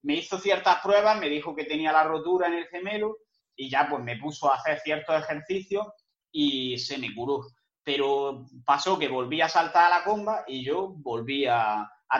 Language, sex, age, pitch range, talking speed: Spanish, male, 30-49, 140-185 Hz, 195 wpm